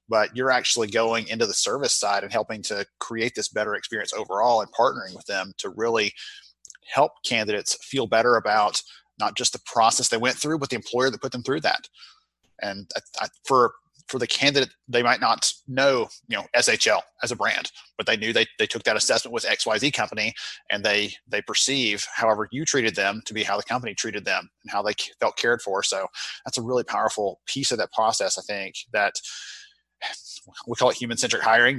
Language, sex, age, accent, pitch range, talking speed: English, male, 30-49, American, 105-135 Hz, 205 wpm